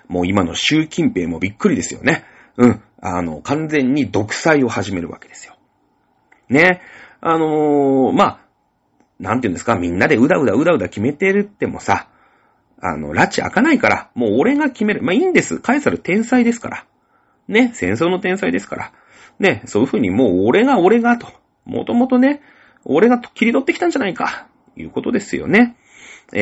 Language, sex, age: Japanese, male, 40-59